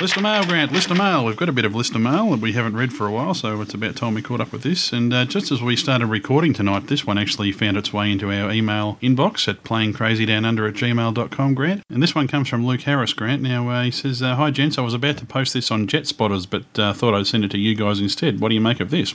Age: 30-49